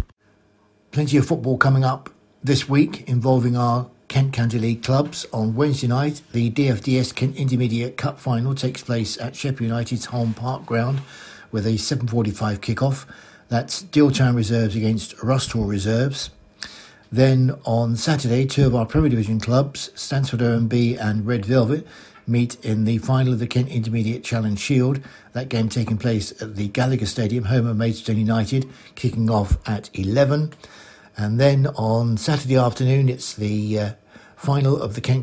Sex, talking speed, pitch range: male, 160 wpm, 110-130 Hz